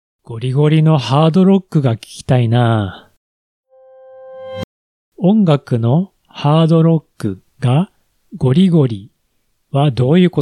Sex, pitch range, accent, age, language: male, 125-180 Hz, native, 40-59, Japanese